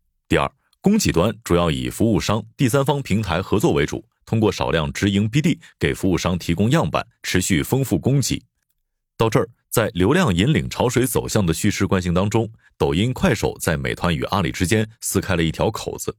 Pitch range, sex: 90-120 Hz, male